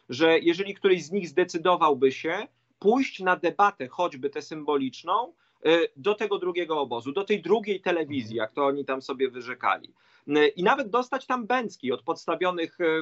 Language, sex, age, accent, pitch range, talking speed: Polish, male, 40-59, native, 150-185 Hz, 155 wpm